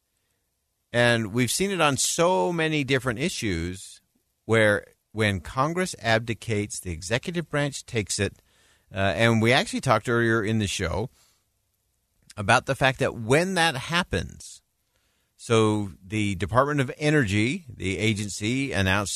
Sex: male